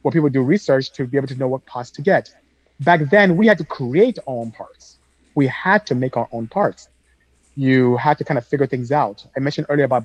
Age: 30-49